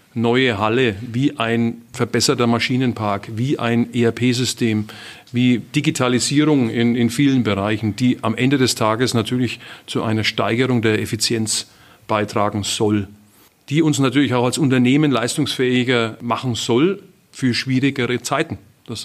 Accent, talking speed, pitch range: German, 130 wpm, 120-150 Hz